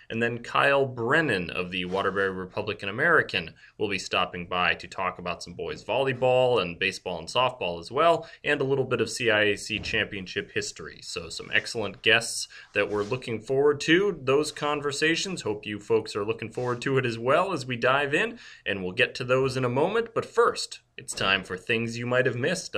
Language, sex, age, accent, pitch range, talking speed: English, male, 30-49, American, 100-145 Hz, 200 wpm